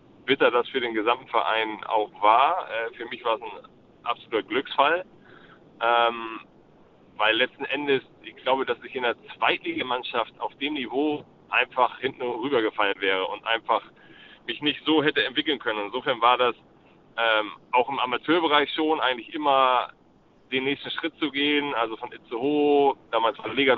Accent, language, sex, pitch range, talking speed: German, German, male, 125-155 Hz, 155 wpm